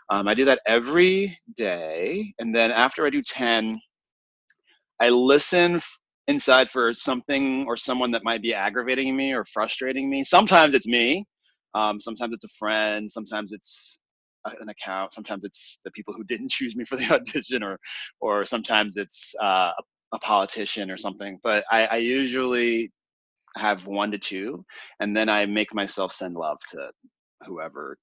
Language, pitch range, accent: English, 105-145 Hz, American